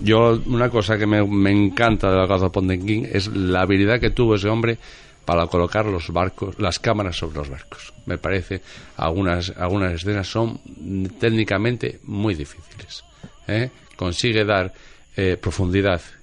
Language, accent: Spanish, Spanish